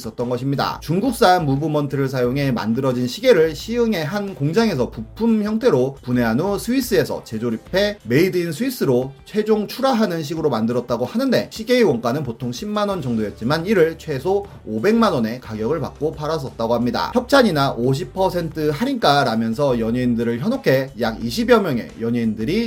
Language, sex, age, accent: Korean, male, 30-49, native